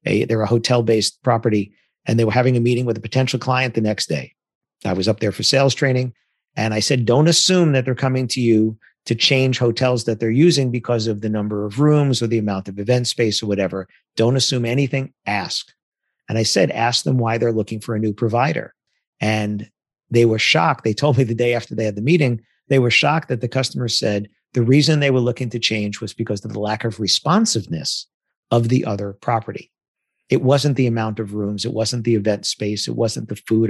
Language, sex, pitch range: English, male, 110-130 Hz